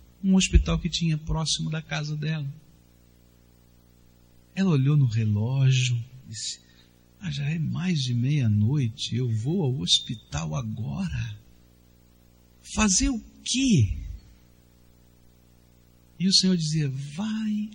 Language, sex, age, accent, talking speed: English, male, 60-79, Brazilian, 110 wpm